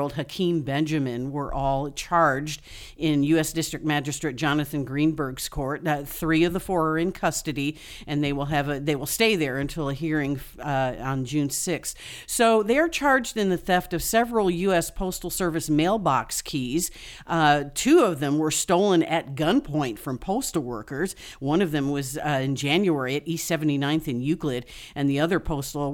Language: English